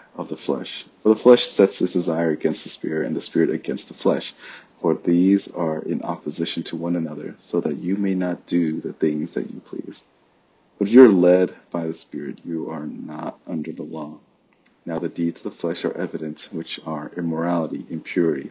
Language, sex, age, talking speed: English, male, 30-49, 205 wpm